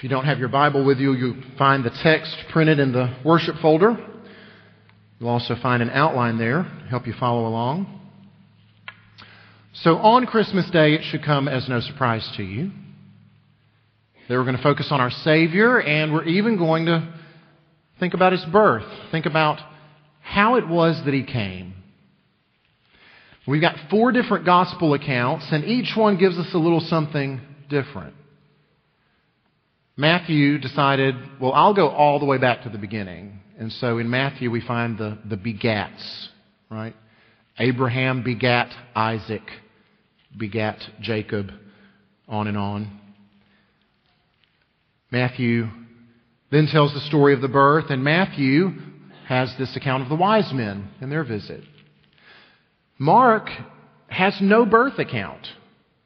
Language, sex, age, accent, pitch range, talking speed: English, male, 40-59, American, 115-165 Hz, 145 wpm